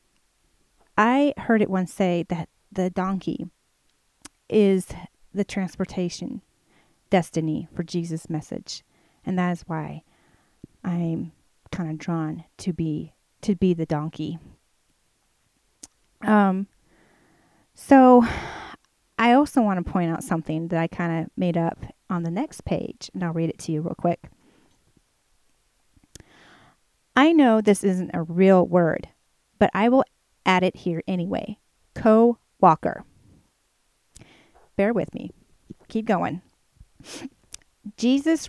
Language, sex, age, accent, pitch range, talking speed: English, female, 30-49, American, 165-210 Hz, 120 wpm